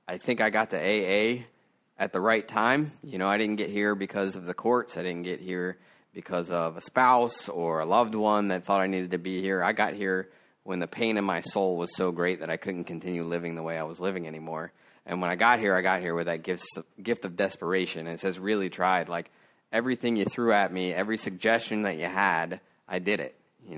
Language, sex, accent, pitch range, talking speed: English, male, American, 90-110 Hz, 240 wpm